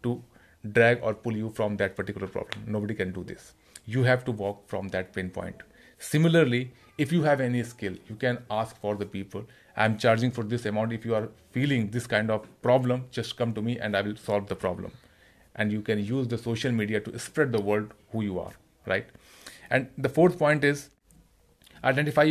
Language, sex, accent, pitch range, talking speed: Hindi, male, native, 105-130 Hz, 210 wpm